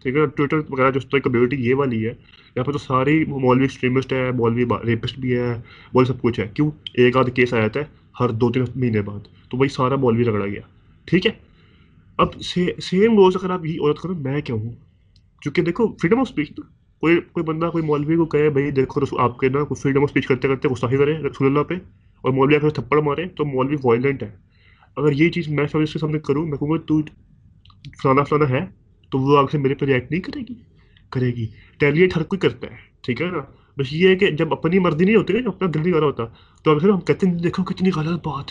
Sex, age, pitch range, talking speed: male, 30-49, 120-160 Hz, 230 wpm